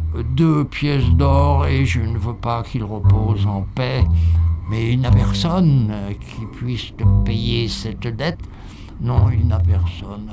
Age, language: 60-79, French